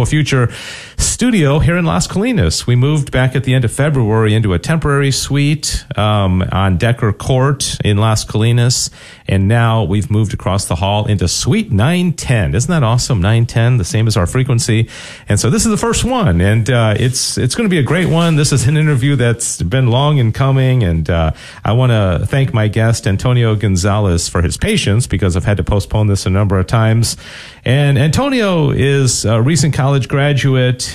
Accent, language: American, English